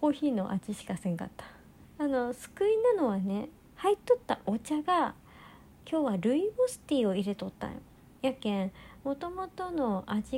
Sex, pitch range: male, 205-290 Hz